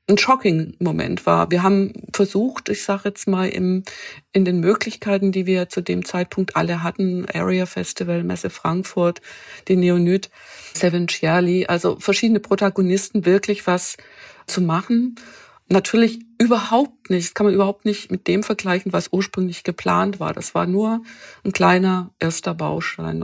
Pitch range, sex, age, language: 180-205 Hz, female, 50-69, German